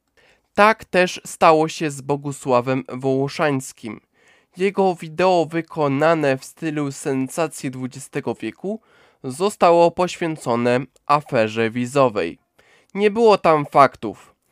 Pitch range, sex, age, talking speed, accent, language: 130-170 Hz, male, 20-39, 95 wpm, native, Polish